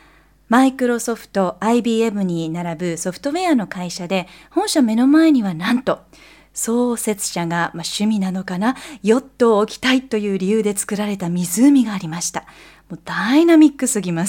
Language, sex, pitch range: Japanese, female, 195-275 Hz